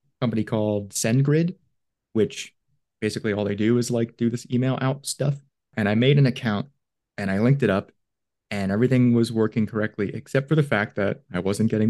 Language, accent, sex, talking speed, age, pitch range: English, American, male, 190 wpm, 30-49, 115-140 Hz